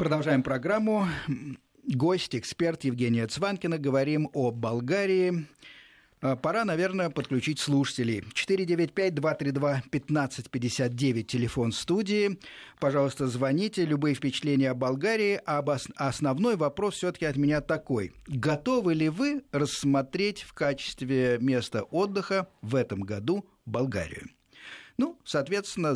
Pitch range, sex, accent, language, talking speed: 125-165 Hz, male, native, Russian, 95 wpm